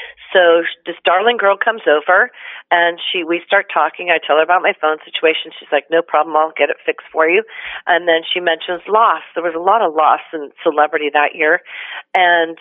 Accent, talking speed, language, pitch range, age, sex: American, 210 wpm, English, 155-190 Hz, 40-59, female